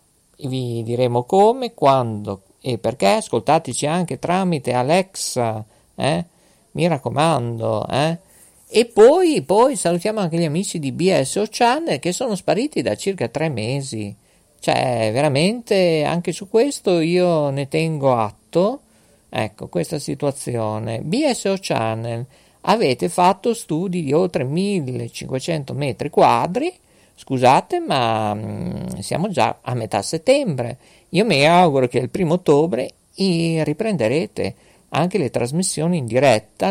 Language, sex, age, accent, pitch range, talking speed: Italian, male, 50-69, native, 120-180 Hz, 120 wpm